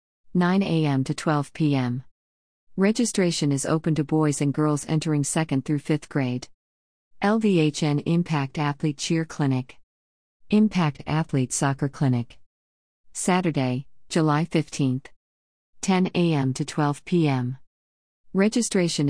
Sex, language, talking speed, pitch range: female, English, 110 wpm, 125-165 Hz